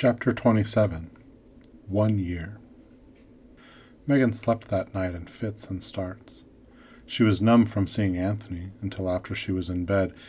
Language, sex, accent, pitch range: English, male, American, 90-110 Hz